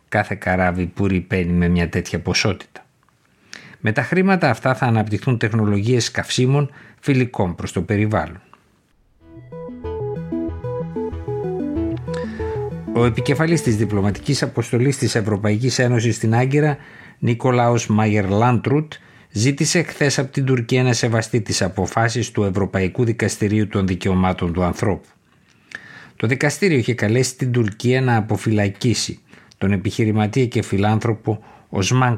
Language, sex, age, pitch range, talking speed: Greek, male, 50-69, 100-125 Hz, 115 wpm